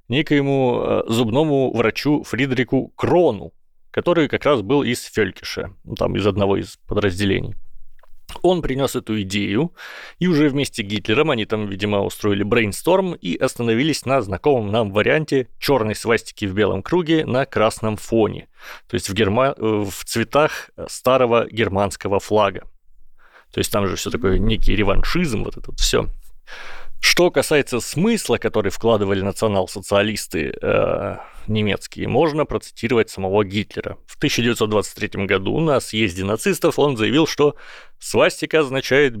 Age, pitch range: 30-49, 105-135 Hz